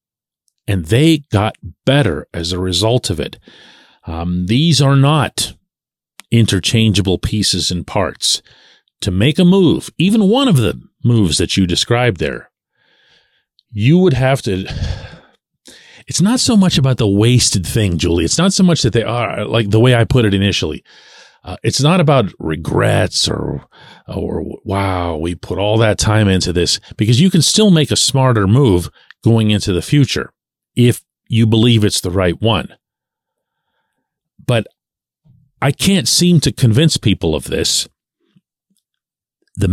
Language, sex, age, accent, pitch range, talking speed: English, male, 40-59, American, 100-150 Hz, 155 wpm